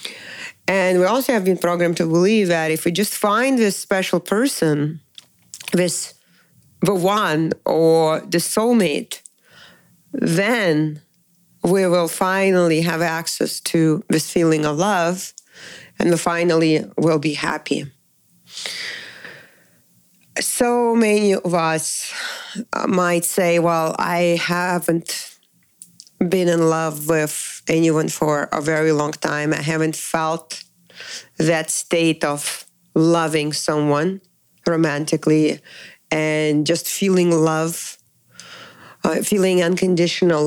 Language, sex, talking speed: English, female, 105 wpm